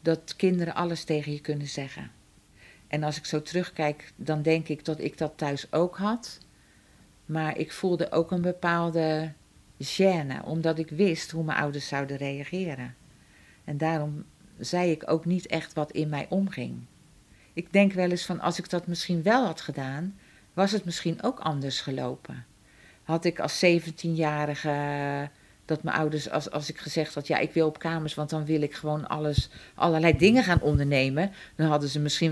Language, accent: Dutch, Dutch